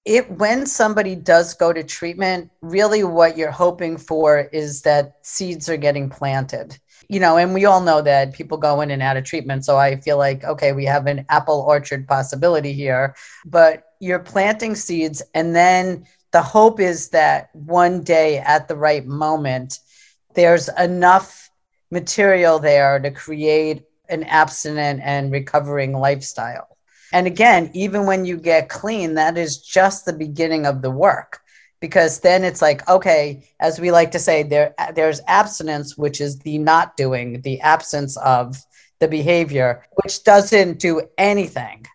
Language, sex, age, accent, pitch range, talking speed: English, female, 40-59, American, 145-180 Hz, 160 wpm